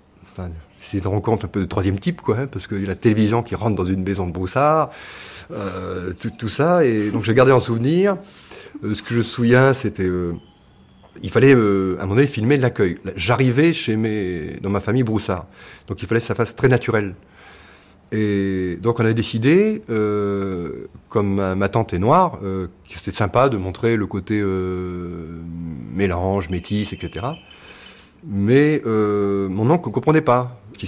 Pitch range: 95-125 Hz